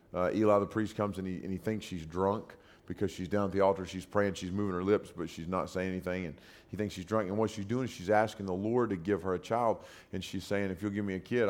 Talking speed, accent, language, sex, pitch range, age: 295 wpm, American, English, male, 95-110 Hz, 40-59